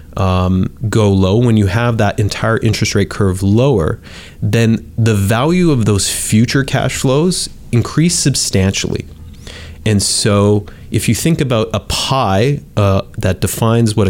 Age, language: 30-49, English